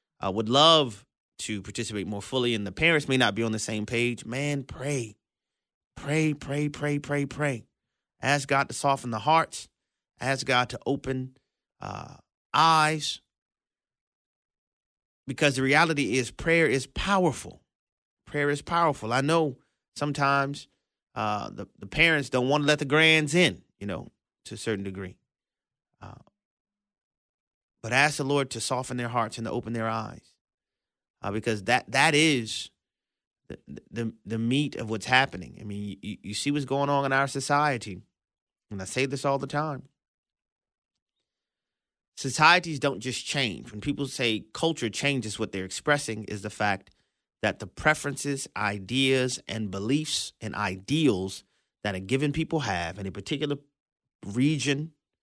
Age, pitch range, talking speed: 30-49, 110-145 Hz, 155 wpm